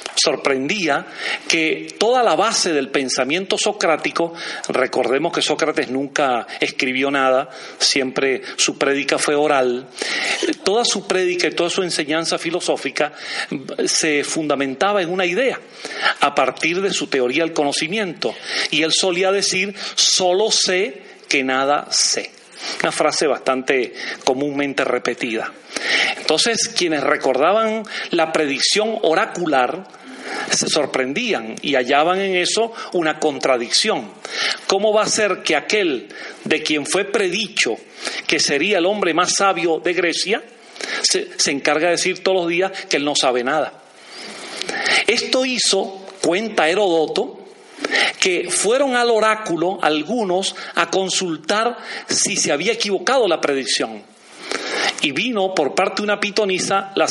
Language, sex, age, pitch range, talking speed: Spanish, male, 40-59, 155-215 Hz, 130 wpm